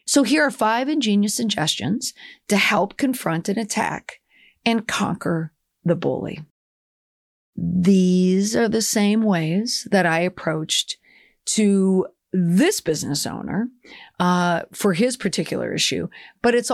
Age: 40-59